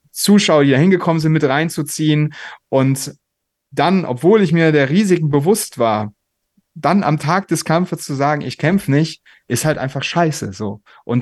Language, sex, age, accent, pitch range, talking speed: German, male, 30-49, German, 130-155 Hz, 170 wpm